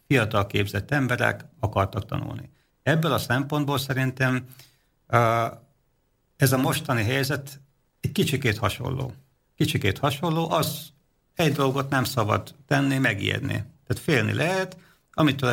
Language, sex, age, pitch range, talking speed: Slovak, male, 50-69, 110-140 Hz, 110 wpm